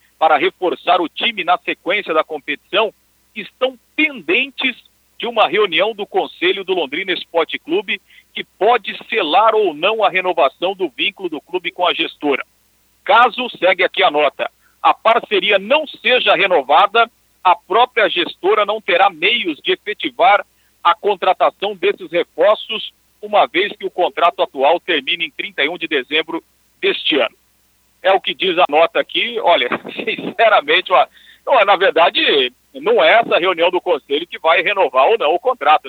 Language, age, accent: Portuguese, 50-69, Brazilian